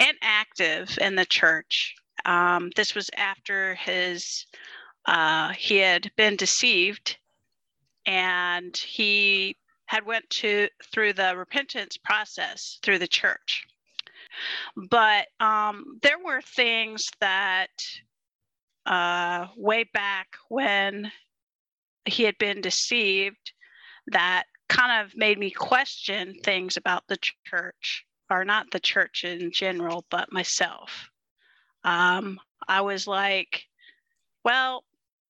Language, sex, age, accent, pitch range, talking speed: English, female, 50-69, American, 185-225 Hz, 105 wpm